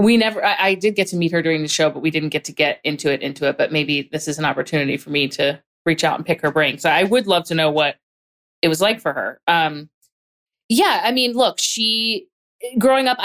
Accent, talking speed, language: American, 260 wpm, English